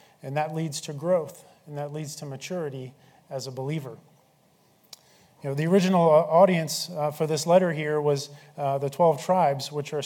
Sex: male